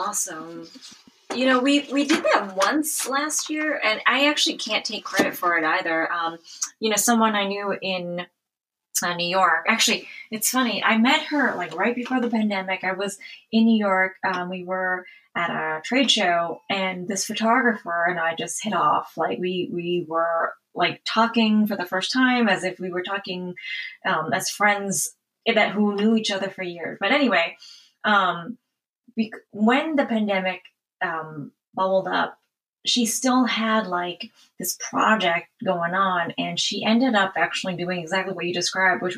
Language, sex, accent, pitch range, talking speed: English, female, American, 175-225 Hz, 175 wpm